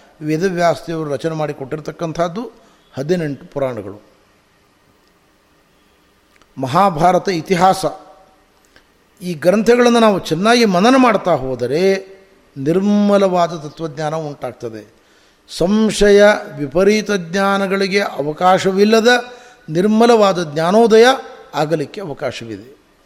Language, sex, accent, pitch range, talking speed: Kannada, male, native, 150-215 Hz, 65 wpm